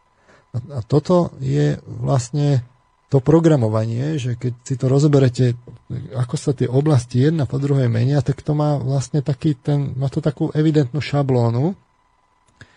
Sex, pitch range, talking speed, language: male, 120-145 Hz, 140 wpm, Slovak